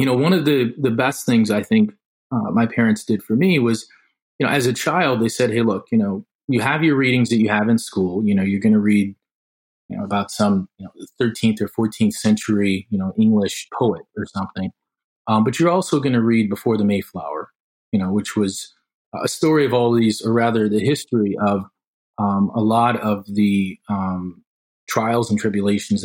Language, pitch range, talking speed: English, 100-120 Hz, 210 wpm